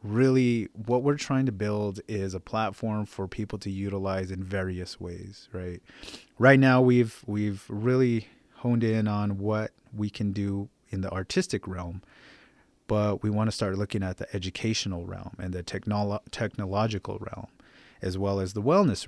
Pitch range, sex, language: 95-110 Hz, male, English